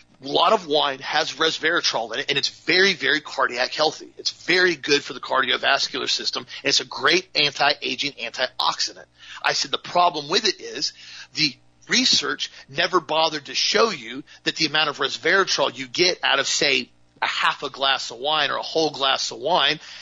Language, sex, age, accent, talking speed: English, male, 40-59, American, 185 wpm